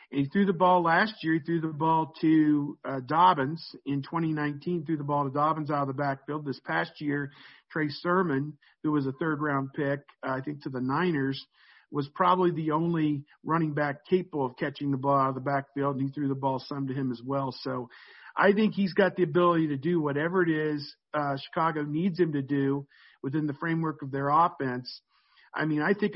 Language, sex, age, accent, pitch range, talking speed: English, male, 50-69, American, 135-160 Hz, 215 wpm